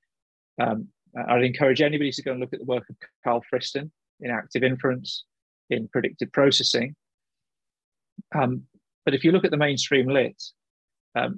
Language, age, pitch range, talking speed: English, 30-49, 120-135 Hz, 160 wpm